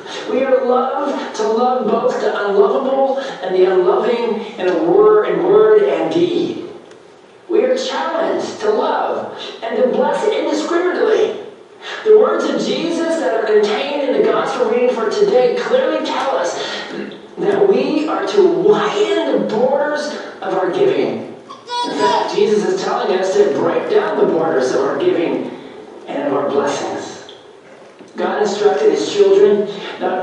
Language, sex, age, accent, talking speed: English, male, 40-59, American, 145 wpm